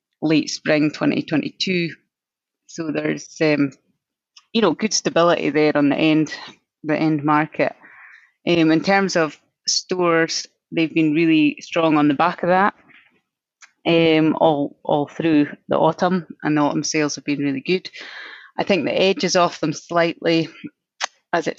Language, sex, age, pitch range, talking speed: English, female, 30-49, 145-170 Hz, 160 wpm